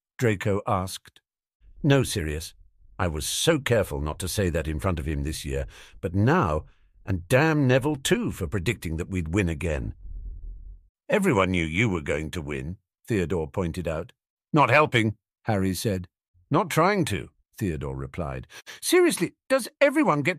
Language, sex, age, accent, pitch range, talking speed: English, male, 50-69, British, 90-150 Hz, 155 wpm